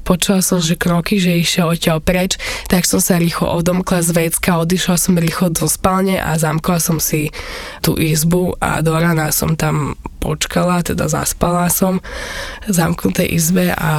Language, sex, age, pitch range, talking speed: Slovak, female, 20-39, 165-200 Hz, 165 wpm